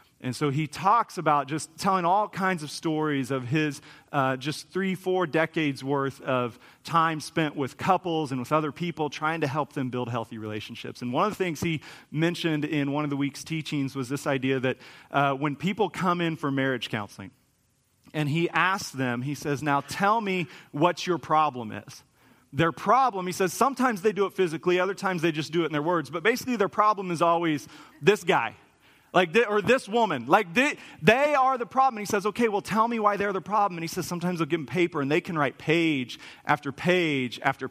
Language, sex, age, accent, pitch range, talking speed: English, male, 40-59, American, 135-180 Hz, 220 wpm